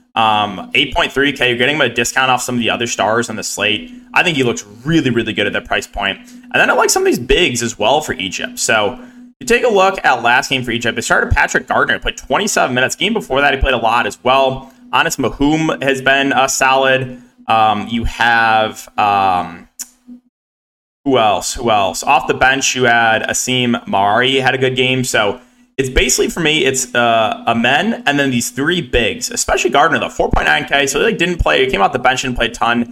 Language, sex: English, male